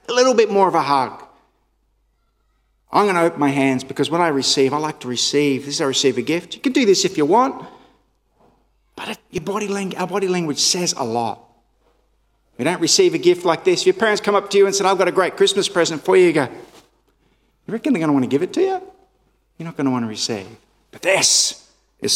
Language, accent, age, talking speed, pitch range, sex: English, Australian, 50-69, 250 wpm, 135-190 Hz, male